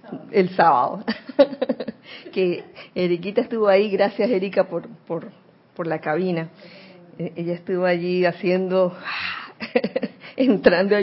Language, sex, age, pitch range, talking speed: Spanish, female, 40-59, 170-240 Hz, 105 wpm